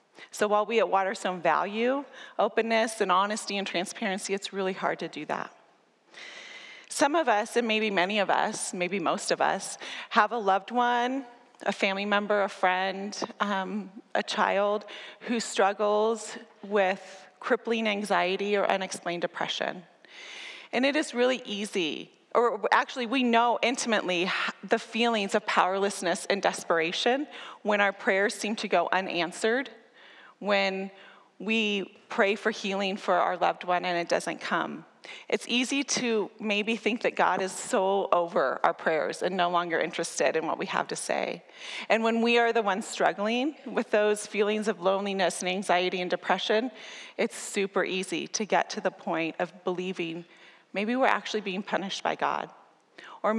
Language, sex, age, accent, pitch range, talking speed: English, female, 30-49, American, 185-230 Hz, 160 wpm